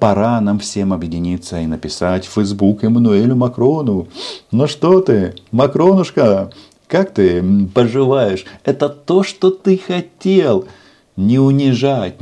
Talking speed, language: 120 wpm, Russian